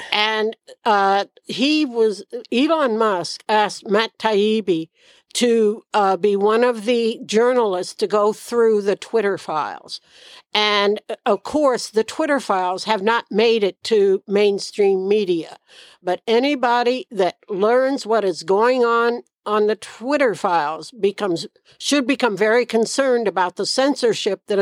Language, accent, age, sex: English, American, 60-79, female